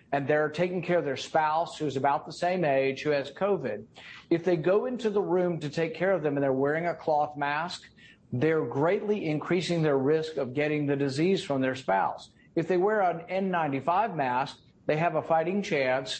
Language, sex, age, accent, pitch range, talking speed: English, male, 50-69, American, 145-180 Hz, 205 wpm